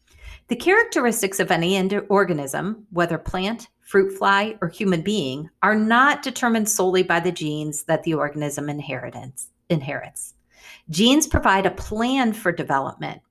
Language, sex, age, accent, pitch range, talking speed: English, female, 50-69, American, 160-230 Hz, 130 wpm